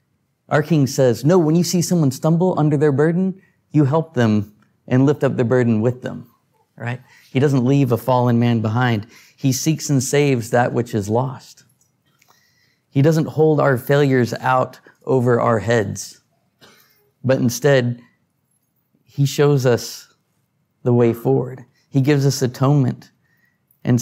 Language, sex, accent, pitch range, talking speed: English, male, American, 115-140 Hz, 150 wpm